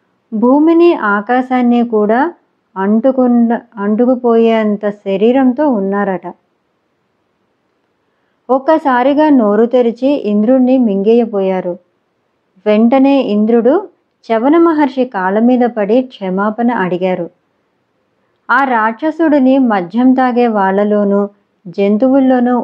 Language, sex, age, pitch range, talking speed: Telugu, male, 20-39, 205-260 Hz, 70 wpm